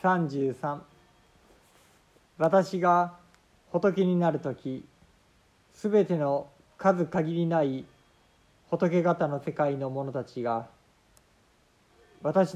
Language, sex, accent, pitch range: Japanese, male, native, 125-175 Hz